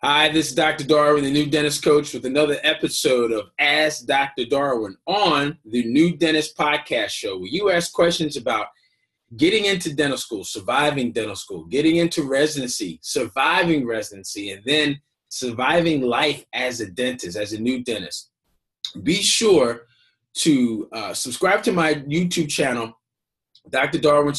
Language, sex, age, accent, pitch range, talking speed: English, male, 30-49, American, 125-165 Hz, 150 wpm